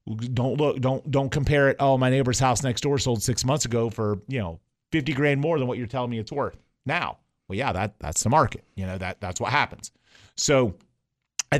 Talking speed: 230 wpm